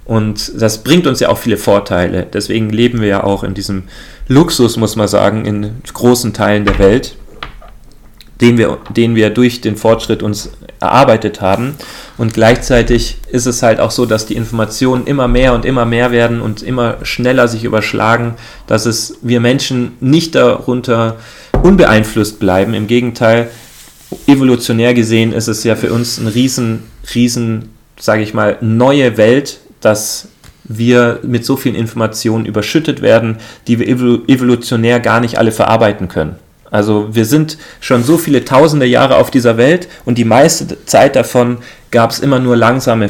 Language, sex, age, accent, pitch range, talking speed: German, male, 30-49, German, 110-125 Hz, 165 wpm